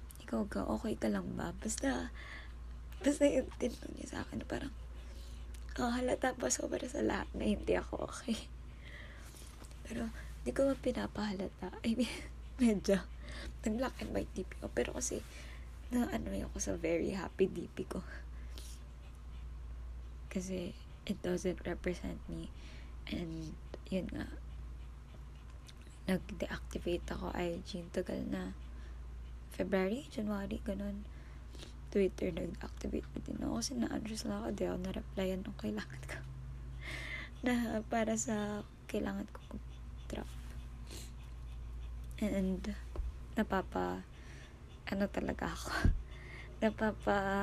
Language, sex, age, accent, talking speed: Filipino, female, 20-39, native, 110 wpm